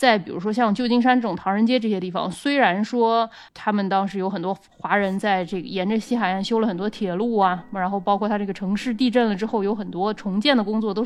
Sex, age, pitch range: female, 20-39, 190-235 Hz